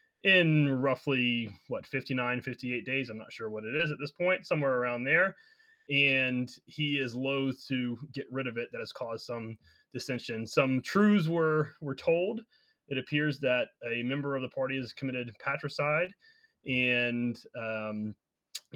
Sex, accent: male, American